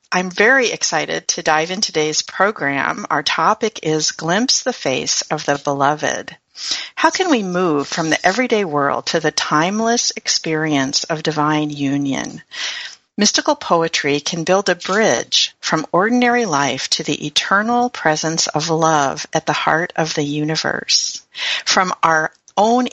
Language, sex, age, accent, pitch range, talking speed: English, female, 50-69, American, 150-205 Hz, 145 wpm